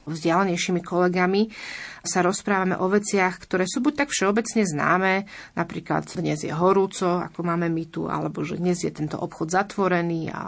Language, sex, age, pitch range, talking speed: Slovak, female, 30-49, 170-205 Hz, 160 wpm